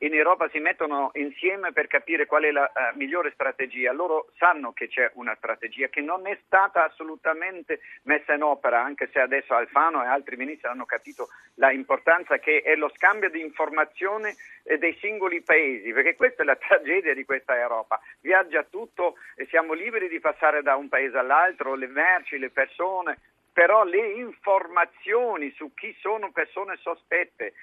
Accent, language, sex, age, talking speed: native, Italian, male, 50-69, 165 wpm